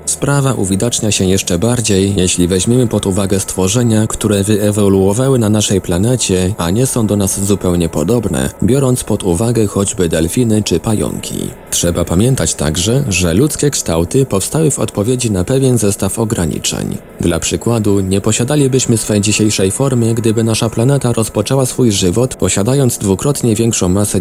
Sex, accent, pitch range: male, native, 95-120 Hz